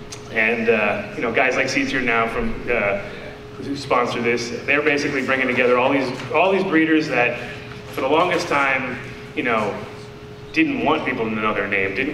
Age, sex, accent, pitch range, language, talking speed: 30-49, male, American, 110-150 Hz, English, 185 wpm